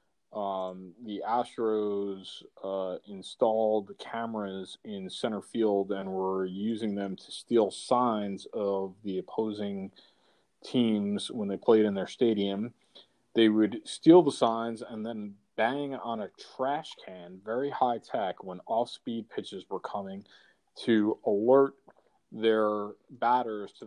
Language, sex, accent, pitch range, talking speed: English, male, American, 100-125 Hz, 130 wpm